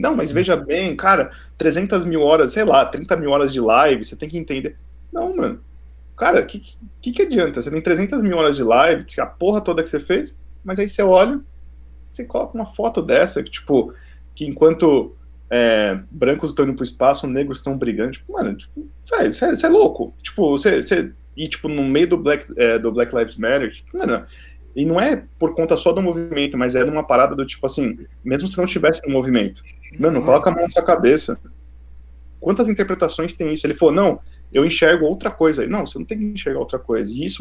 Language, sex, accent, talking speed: Portuguese, male, Brazilian, 215 wpm